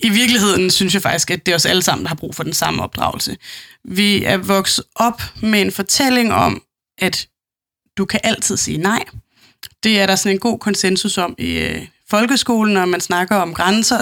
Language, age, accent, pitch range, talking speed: Danish, 20-39, native, 185-220 Hz, 200 wpm